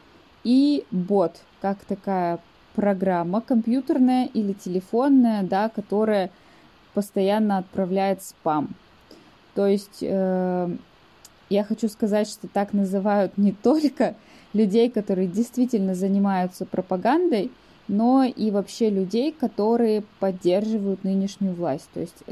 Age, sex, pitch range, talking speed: 20-39, female, 185-230 Hz, 105 wpm